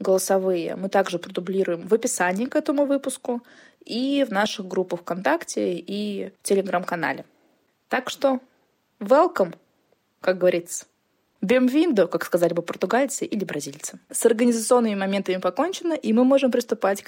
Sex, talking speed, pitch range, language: female, 130 wpm, 180-245 Hz, Russian